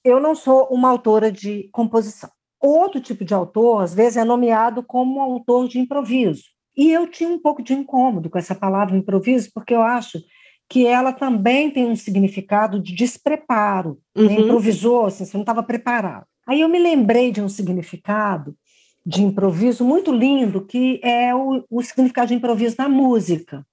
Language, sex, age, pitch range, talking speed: Portuguese, female, 50-69, 195-260 Hz, 170 wpm